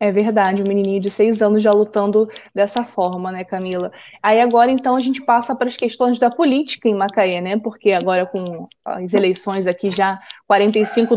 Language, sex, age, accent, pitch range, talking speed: Portuguese, female, 20-39, Brazilian, 210-255 Hz, 190 wpm